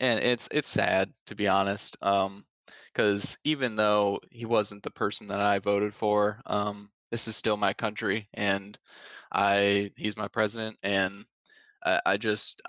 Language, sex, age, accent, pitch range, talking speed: English, male, 20-39, American, 95-110 Hz, 160 wpm